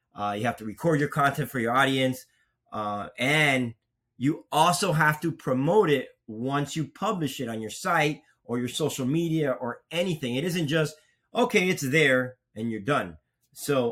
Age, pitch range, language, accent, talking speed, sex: 30-49, 125-160 Hz, English, American, 175 wpm, male